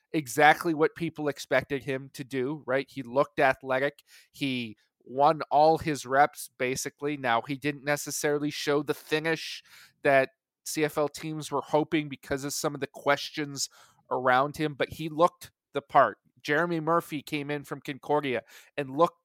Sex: male